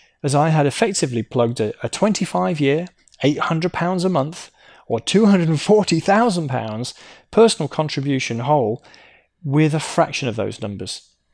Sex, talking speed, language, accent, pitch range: male, 110 wpm, English, British, 125-175 Hz